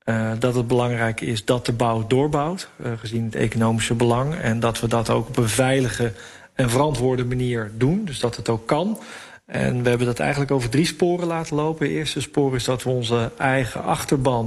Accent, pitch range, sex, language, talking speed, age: Dutch, 115-130 Hz, male, English, 205 wpm, 40-59